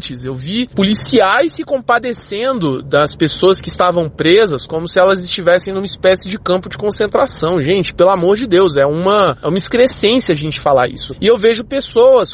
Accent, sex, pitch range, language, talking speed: Brazilian, male, 180-260 Hz, Portuguese, 180 wpm